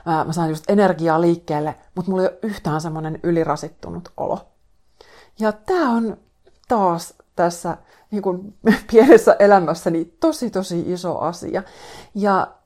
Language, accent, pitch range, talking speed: Finnish, native, 155-185 Hz, 125 wpm